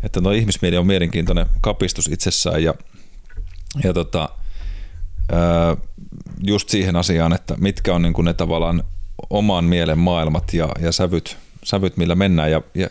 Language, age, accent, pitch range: Finnish, 30-49, native, 85-95 Hz